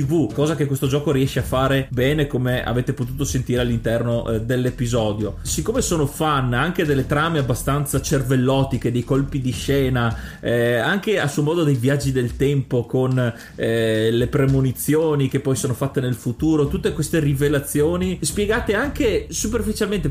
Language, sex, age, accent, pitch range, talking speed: Italian, male, 30-49, native, 125-155 Hz, 150 wpm